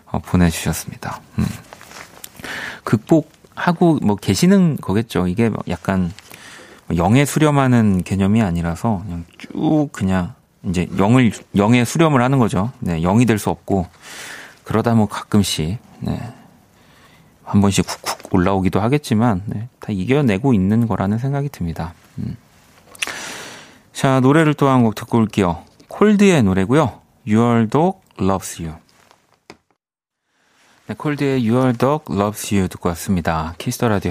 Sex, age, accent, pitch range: male, 40-59, native, 90-120 Hz